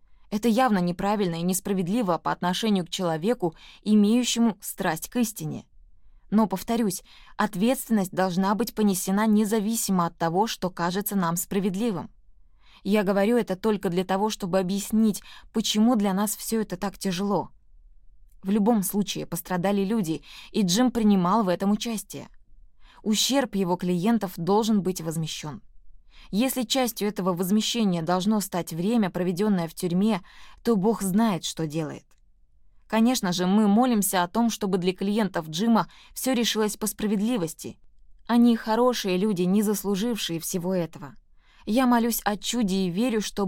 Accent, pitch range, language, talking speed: native, 180-220 Hz, Russian, 140 wpm